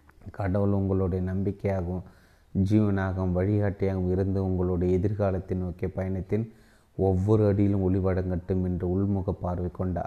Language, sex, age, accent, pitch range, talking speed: Tamil, male, 30-49, native, 95-100 Hz, 100 wpm